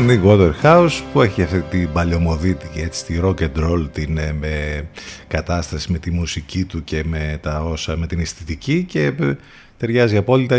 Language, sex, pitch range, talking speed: Greek, male, 85-115 Hz, 165 wpm